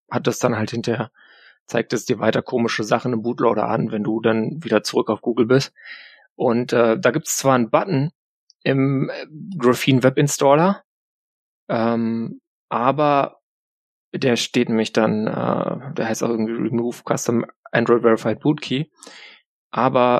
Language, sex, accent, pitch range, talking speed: German, male, German, 110-125 Hz, 155 wpm